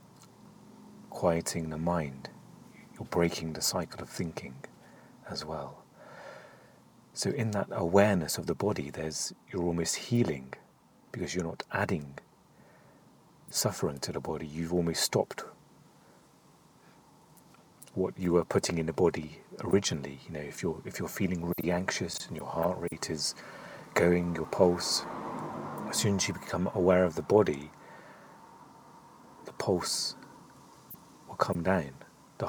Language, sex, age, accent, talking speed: English, male, 40-59, British, 135 wpm